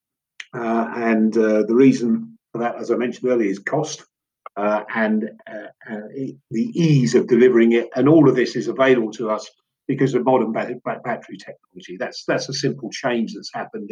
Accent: British